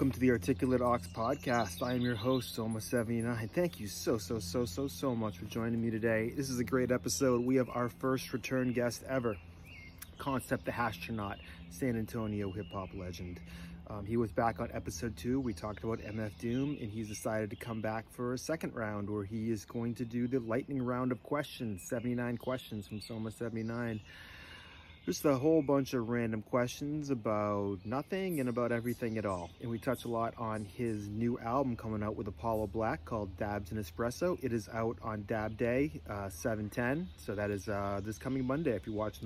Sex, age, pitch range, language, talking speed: male, 30-49, 105-130 Hz, English, 195 wpm